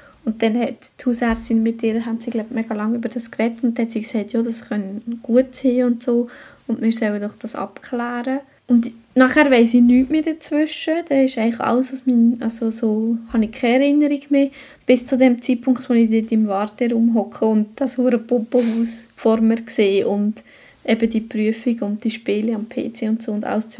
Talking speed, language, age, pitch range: 205 wpm, German, 20-39, 225-250 Hz